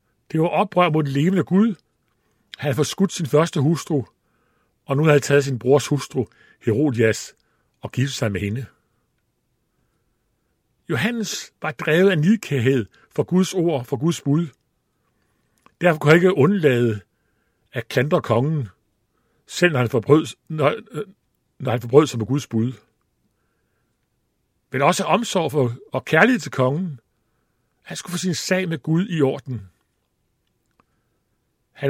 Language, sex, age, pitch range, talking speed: Danish, male, 60-79, 115-155 Hz, 145 wpm